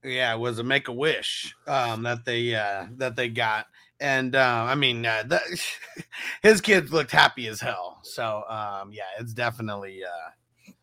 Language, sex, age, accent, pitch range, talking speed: English, male, 30-49, American, 120-170 Hz, 175 wpm